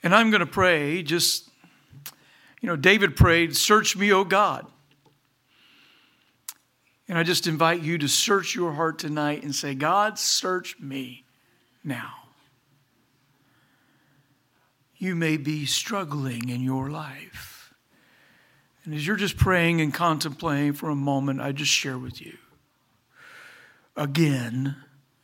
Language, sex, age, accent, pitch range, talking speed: English, male, 60-79, American, 135-165 Hz, 130 wpm